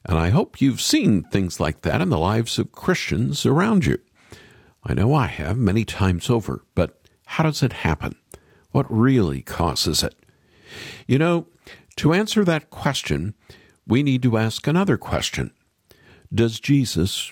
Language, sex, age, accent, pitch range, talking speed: English, male, 50-69, American, 85-125 Hz, 155 wpm